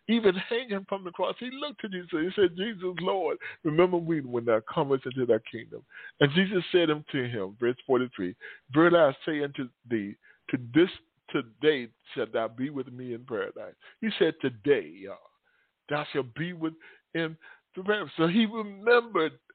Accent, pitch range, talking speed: American, 130-210 Hz, 180 wpm